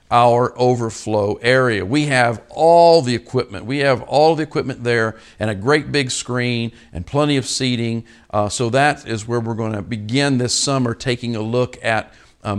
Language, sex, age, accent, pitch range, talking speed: English, male, 50-69, American, 110-135 Hz, 185 wpm